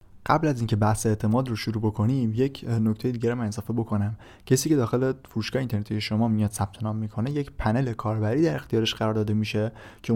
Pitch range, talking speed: 110-130 Hz, 190 wpm